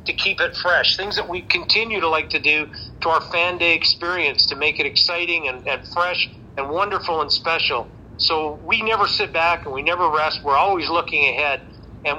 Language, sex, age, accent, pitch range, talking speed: English, male, 40-59, American, 145-180 Hz, 205 wpm